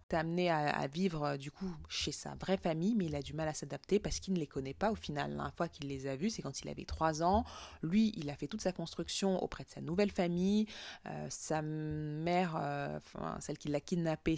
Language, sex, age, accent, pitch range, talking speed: French, female, 20-39, French, 140-185 Hz, 255 wpm